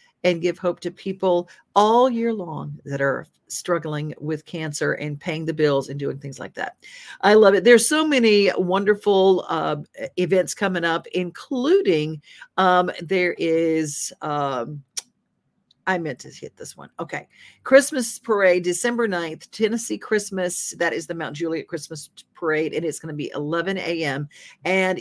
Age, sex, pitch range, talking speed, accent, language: 50-69, female, 155-205 Hz, 160 wpm, American, English